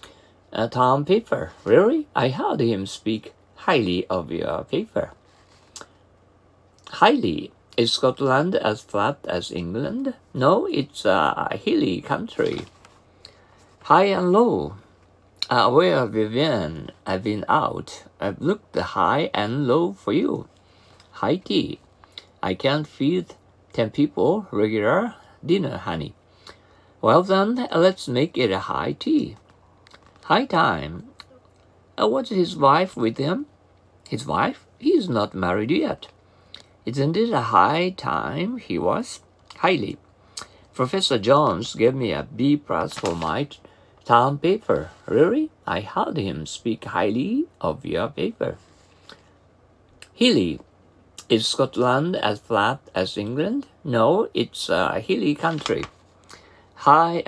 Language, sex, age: Japanese, male, 50-69